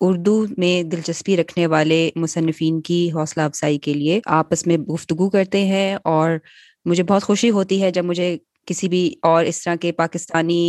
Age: 20-39